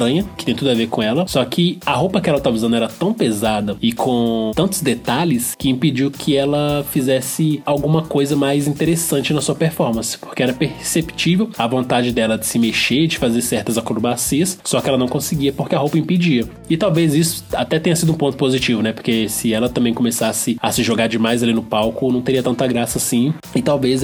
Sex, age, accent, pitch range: male, 20-39, Brazilian, 120-160 Hz